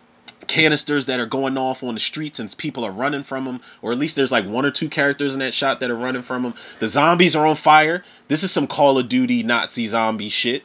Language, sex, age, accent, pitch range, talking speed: English, male, 30-49, American, 120-160 Hz, 255 wpm